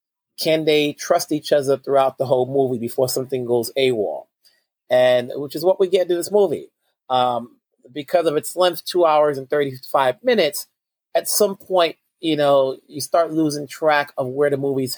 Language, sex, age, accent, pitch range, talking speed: English, male, 30-49, American, 130-155 Hz, 180 wpm